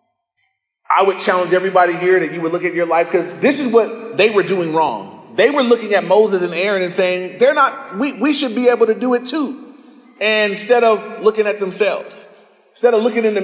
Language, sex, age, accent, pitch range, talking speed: English, male, 30-49, American, 155-220 Hz, 230 wpm